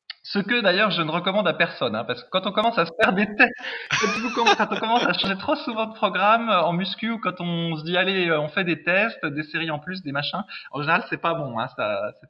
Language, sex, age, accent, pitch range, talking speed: French, male, 20-39, French, 150-220 Hz, 265 wpm